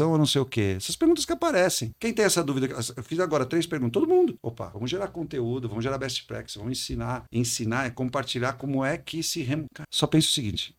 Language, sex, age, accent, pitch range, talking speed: Portuguese, male, 50-69, Brazilian, 115-165 Hz, 235 wpm